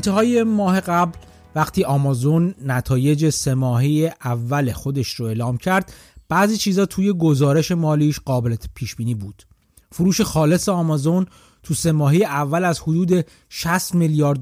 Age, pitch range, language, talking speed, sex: 30-49, 135-180 Hz, Persian, 125 wpm, male